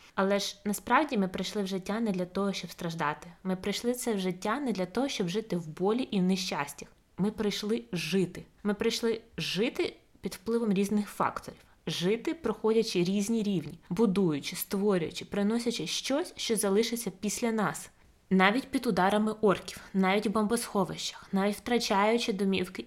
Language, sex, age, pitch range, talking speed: Ukrainian, female, 20-39, 180-215 Hz, 155 wpm